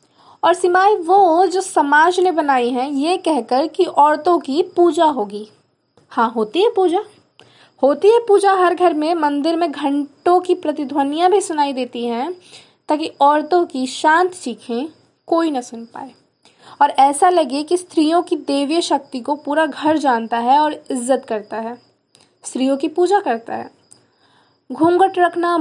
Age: 20-39